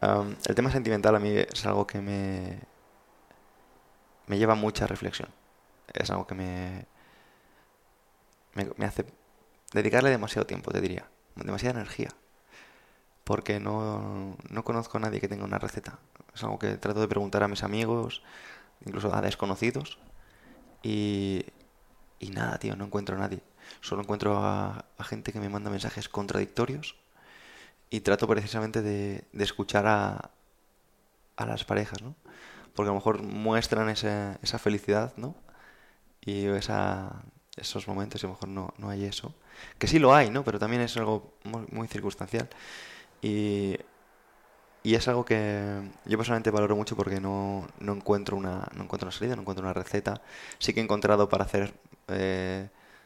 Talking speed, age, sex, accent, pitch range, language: 160 wpm, 20-39, male, Spanish, 100-110 Hz, Spanish